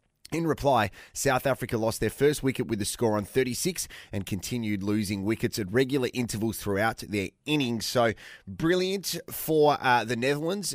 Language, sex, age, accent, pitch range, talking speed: English, male, 20-39, Australian, 105-130 Hz, 160 wpm